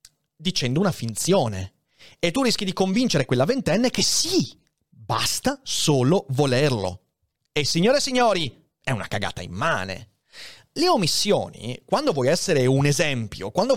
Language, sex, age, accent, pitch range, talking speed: Italian, male, 30-49, native, 125-210 Hz, 135 wpm